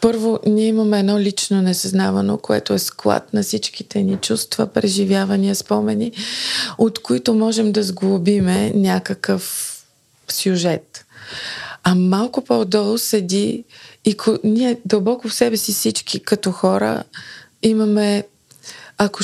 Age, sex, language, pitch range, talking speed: 20-39, female, Bulgarian, 180-215 Hz, 120 wpm